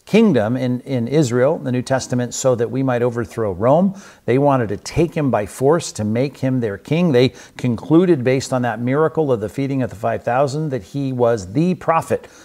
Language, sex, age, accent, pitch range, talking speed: English, male, 50-69, American, 105-130 Hz, 205 wpm